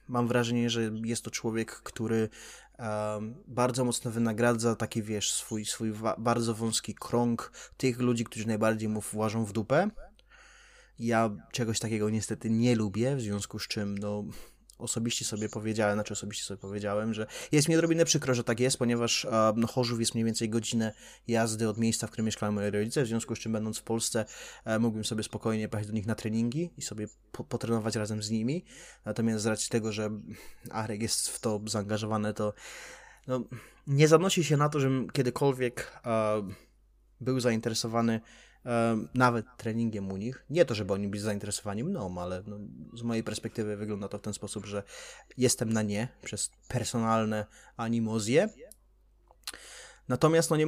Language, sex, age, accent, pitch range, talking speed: Polish, male, 20-39, native, 110-125 Hz, 170 wpm